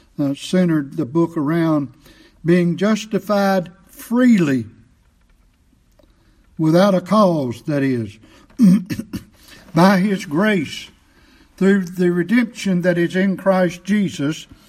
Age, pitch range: 60-79, 155-195 Hz